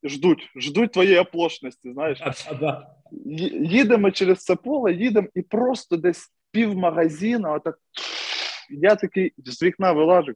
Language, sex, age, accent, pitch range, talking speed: Russian, male, 20-39, native, 160-210 Hz, 125 wpm